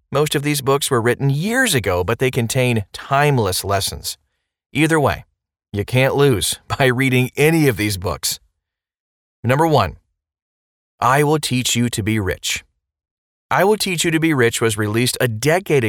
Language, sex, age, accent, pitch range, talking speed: English, male, 30-49, American, 100-140 Hz, 165 wpm